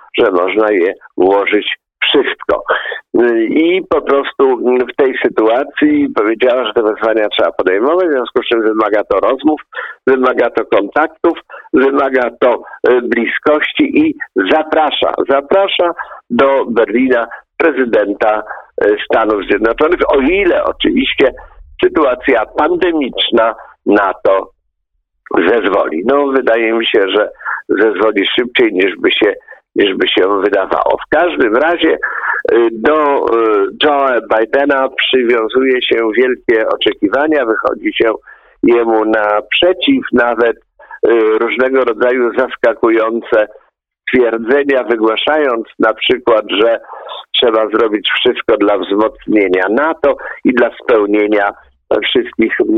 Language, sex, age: Polish, male, 50-69